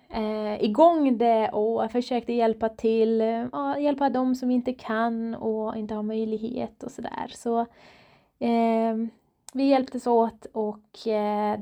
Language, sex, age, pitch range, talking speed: Swedish, female, 20-39, 210-240 Hz, 150 wpm